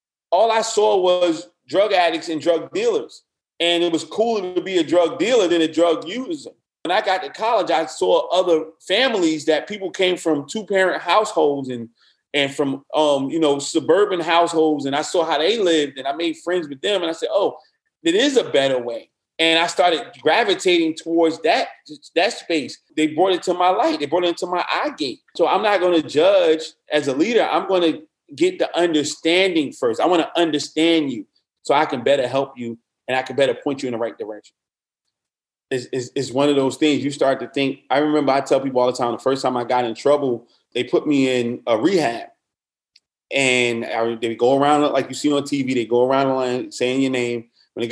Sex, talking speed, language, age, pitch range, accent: male, 210 wpm, English, 30-49, 135-180 Hz, American